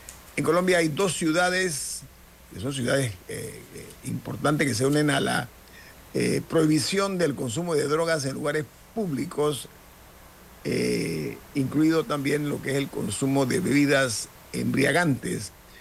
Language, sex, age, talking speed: Spanish, male, 50-69, 135 wpm